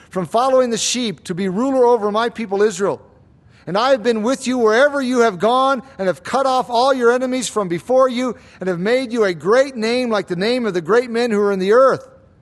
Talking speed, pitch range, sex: 240 wpm, 195-250 Hz, male